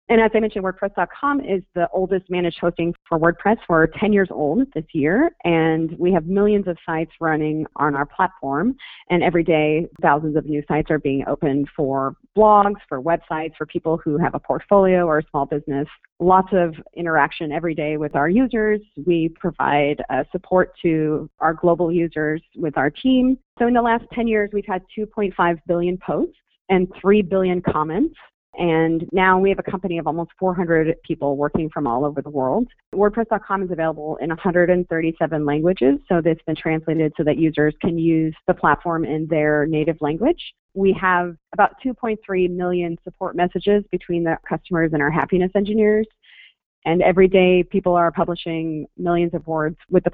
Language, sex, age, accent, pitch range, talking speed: English, female, 30-49, American, 155-190 Hz, 175 wpm